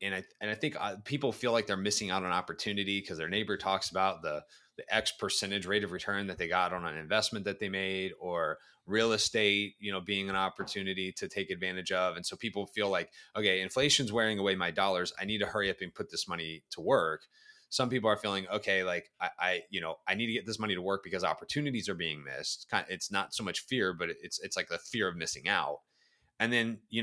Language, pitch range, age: English, 95-120 Hz, 20-39